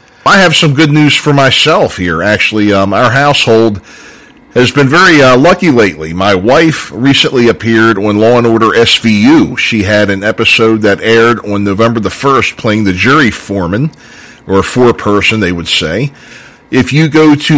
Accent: American